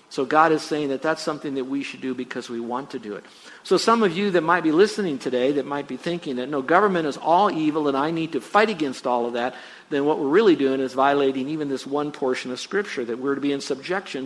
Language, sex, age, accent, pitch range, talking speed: English, male, 50-69, American, 135-175 Hz, 270 wpm